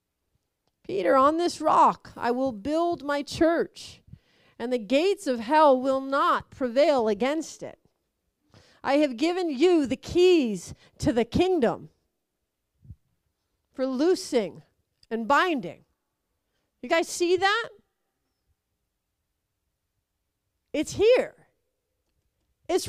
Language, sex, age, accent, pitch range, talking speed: English, female, 40-59, American, 210-300 Hz, 100 wpm